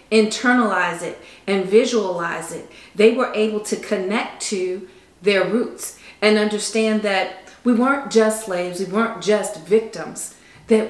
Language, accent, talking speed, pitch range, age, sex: English, American, 140 wpm, 185-225 Hz, 40-59, female